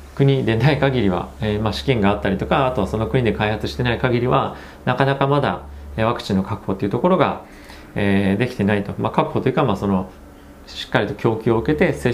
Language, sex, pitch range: Japanese, male, 95-130 Hz